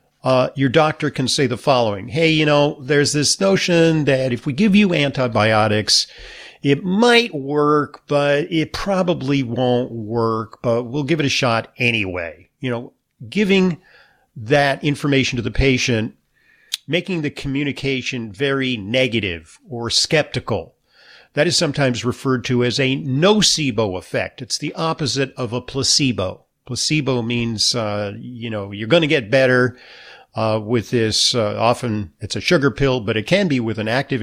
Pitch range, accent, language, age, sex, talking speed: 115-145 Hz, American, English, 50-69, male, 160 wpm